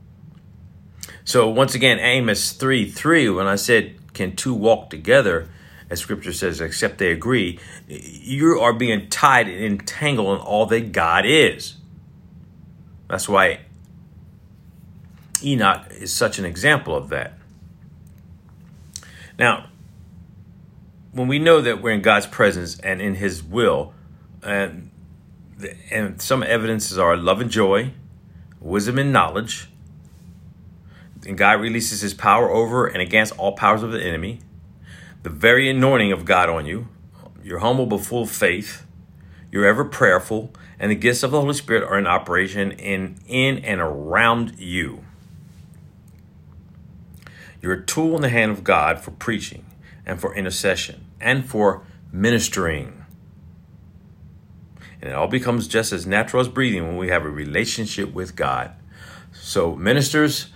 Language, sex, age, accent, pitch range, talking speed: English, male, 50-69, American, 90-120 Hz, 140 wpm